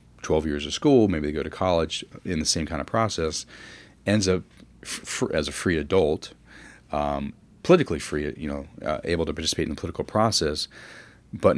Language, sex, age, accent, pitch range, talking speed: English, male, 30-49, American, 80-100 Hz, 190 wpm